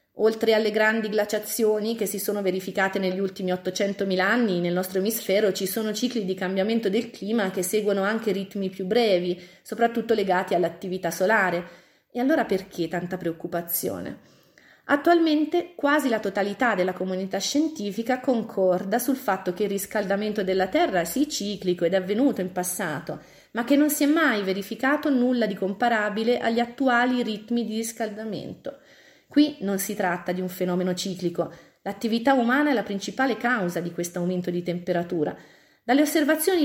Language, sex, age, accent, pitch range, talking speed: Italian, female, 30-49, native, 185-245 Hz, 155 wpm